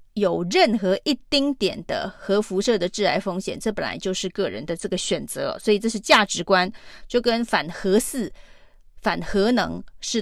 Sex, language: female, Chinese